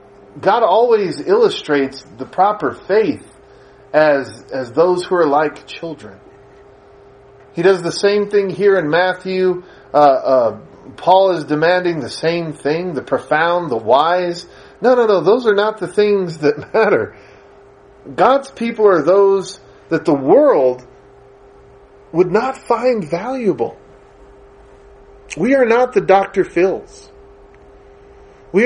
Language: English